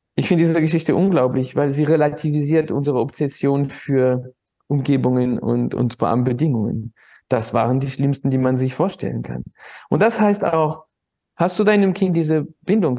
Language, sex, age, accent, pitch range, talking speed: German, male, 50-69, German, 130-190 Hz, 165 wpm